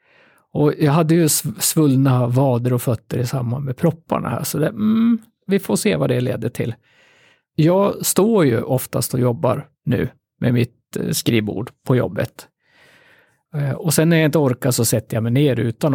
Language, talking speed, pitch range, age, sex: Swedish, 175 wpm, 125-170 Hz, 50-69, male